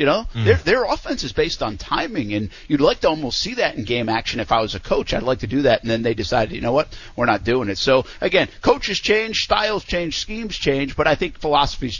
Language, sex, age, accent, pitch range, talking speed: English, male, 50-69, American, 130-155 Hz, 260 wpm